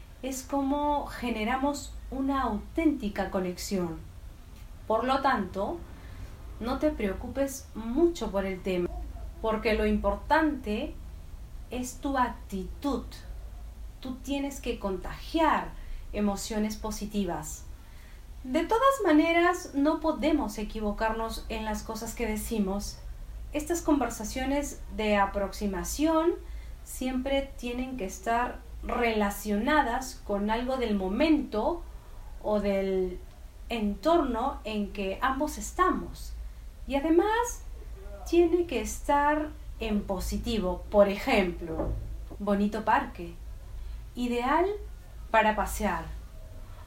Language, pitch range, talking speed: Spanish, 195-280 Hz, 95 wpm